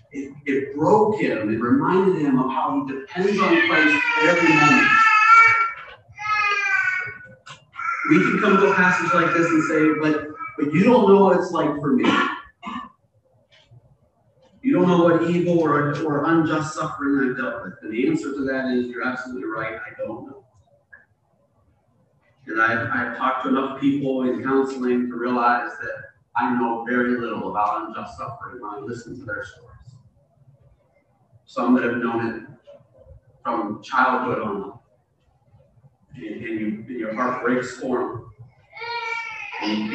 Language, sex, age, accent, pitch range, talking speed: English, male, 30-49, American, 120-170 Hz, 150 wpm